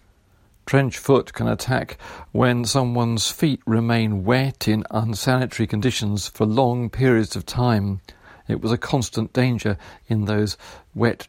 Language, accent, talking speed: English, British, 135 wpm